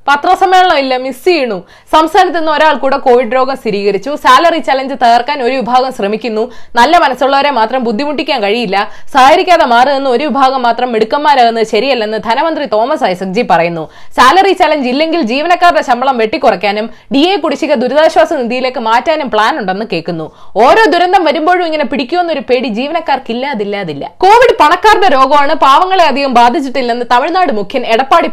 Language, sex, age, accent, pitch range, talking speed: Malayalam, female, 20-39, native, 235-320 Hz, 135 wpm